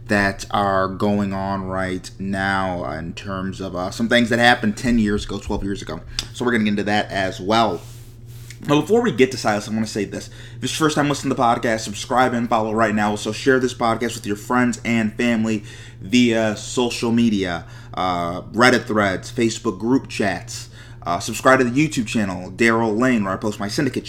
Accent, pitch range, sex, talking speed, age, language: American, 105-120 Hz, male, 210 wpm, 30-49, English